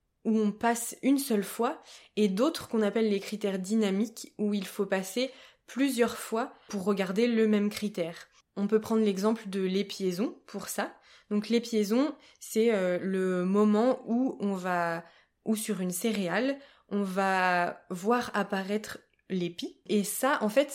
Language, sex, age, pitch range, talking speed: French, female, 20-39, 195-230 Hz, 155 wpm